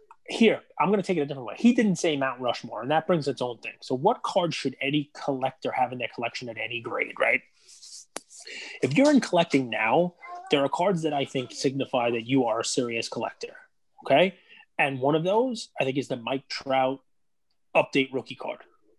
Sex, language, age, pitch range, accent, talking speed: male, English, 20-39, 125-155 Hz, American, 210 wpm